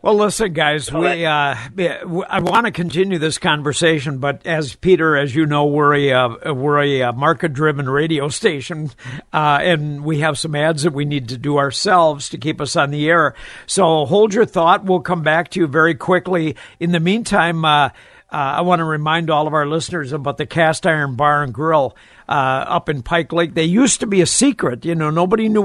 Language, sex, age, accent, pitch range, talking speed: English, male, 60-79, American, 145-180 Hz, 205 wpm